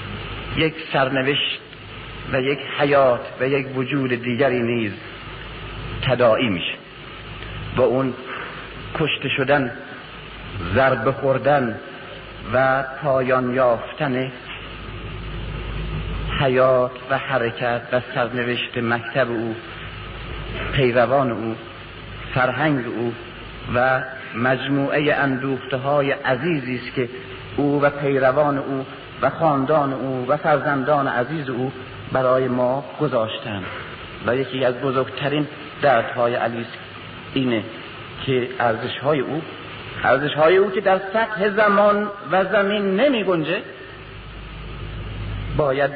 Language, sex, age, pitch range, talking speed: Persian, male, 50-69, 125-140 Hz, 100 wpm